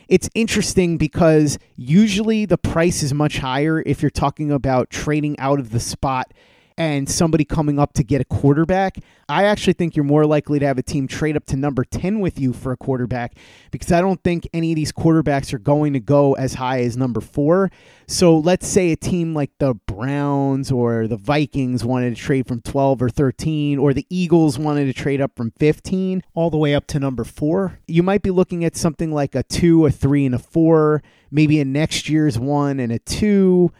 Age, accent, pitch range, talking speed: 30-49, American, 135-160 Hz, 210 wpm